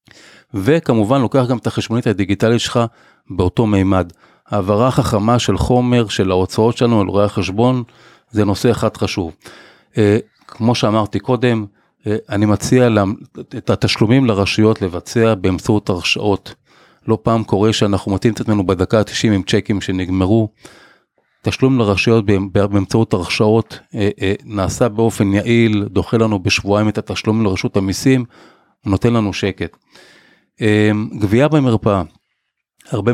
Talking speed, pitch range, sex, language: 130 wpm, 100-115 Hz, male, Hebrew